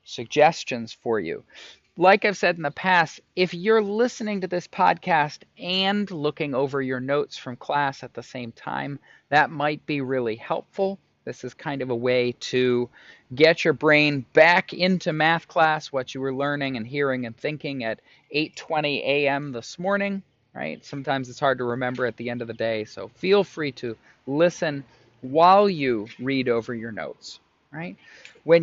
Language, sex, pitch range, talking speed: English, male, 130-180 Hz, 175 wpm